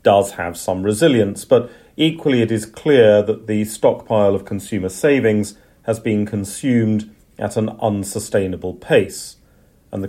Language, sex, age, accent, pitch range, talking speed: English, male, 40-59, British, 95-120 Hz, 145 wpm